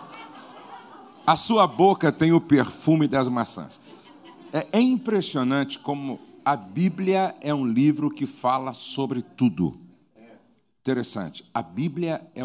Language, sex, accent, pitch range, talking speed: Portuguese, male, Brazilian, 115-170 Hz, 115 wpm